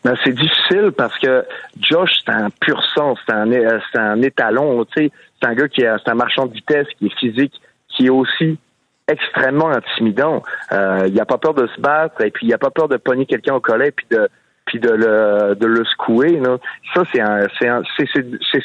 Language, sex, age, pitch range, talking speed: French, male, 40-59, 115-160 Hz, 220 wpm